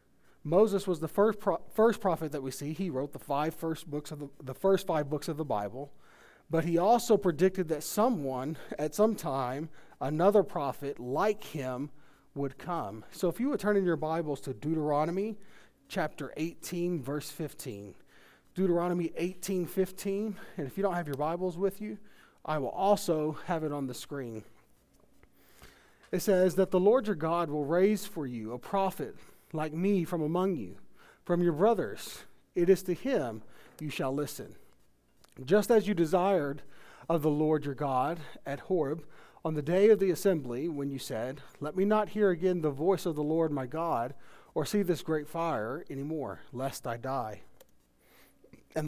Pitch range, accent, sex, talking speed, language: 140-190 Hz, American, male, 180 wpm, English